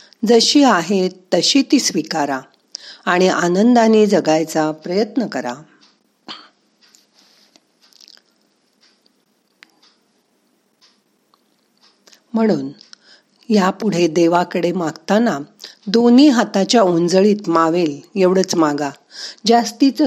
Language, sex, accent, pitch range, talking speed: Marathi, female, native, 170-225 Hz, 65 wpm